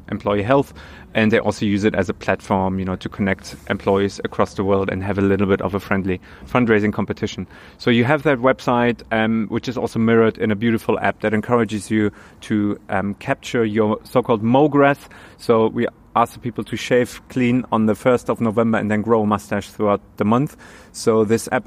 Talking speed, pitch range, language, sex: 210 wpm, 100-120 Hz, German, male